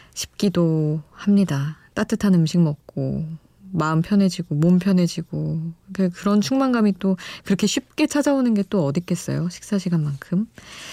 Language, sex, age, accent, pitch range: Korean, female, 20-39, native, 155-200 Hz